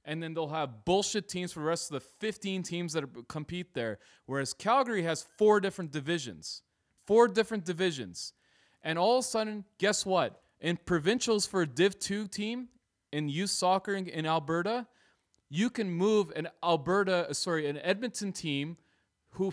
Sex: male